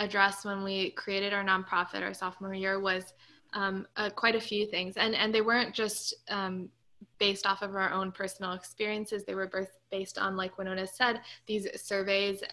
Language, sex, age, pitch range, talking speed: English, female, 20-39, 195-210 Hz, 185 wpm